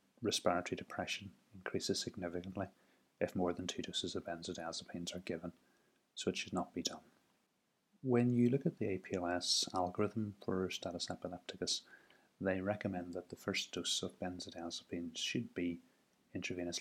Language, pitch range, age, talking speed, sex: English, 85-100 Hz, 30-49, 145 wpm, male